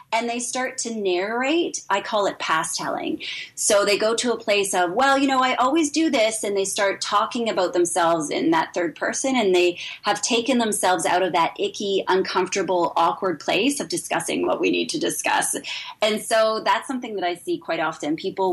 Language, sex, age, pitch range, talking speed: English, female, 20-39, 185-260 Hz, 205 wpm